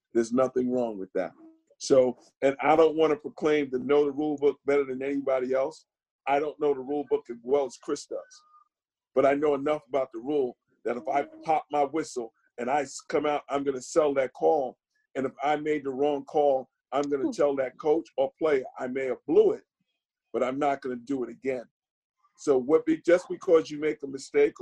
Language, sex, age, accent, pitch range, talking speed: English, male, 50-69, American, 135-155 Hz, 220 wpm